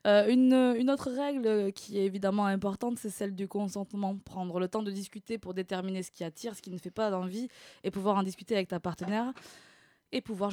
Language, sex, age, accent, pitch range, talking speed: French, female, 20-39, French, 185-230 Hz, 210 wpm